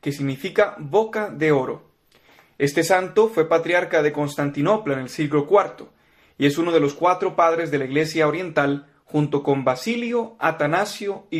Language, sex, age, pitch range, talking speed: Spanish, male, 30-49, 145-190 Hz, 165 wpm